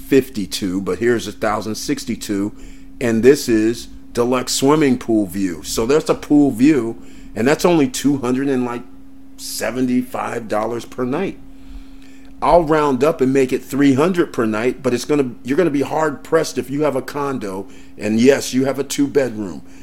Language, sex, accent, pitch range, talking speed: English, male, American, 105-145 Hz, 190 wpm